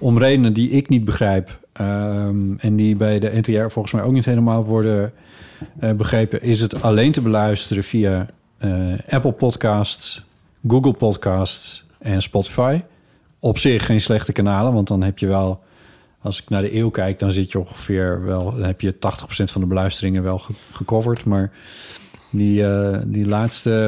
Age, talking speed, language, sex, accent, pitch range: 40-59, 165 wpm, Dutch, male, Dutch, 100-120 Hz